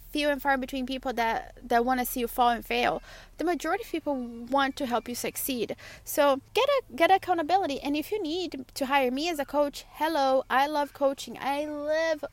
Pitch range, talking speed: 245-295 Hz, 215 wpm